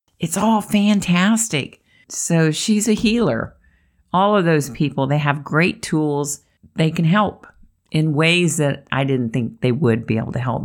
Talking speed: 170 wpm